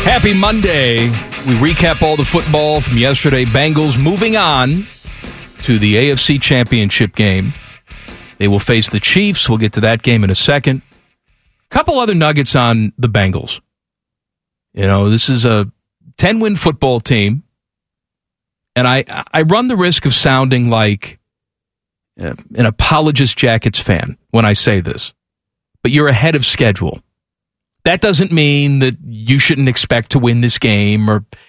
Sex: male